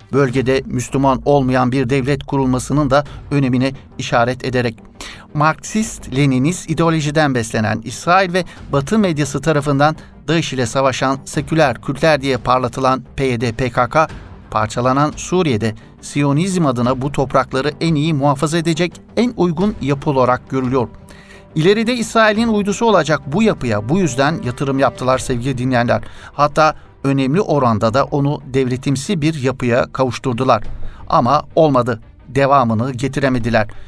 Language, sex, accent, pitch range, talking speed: Turkish, male, native, 125-155 Hz, 120 wpm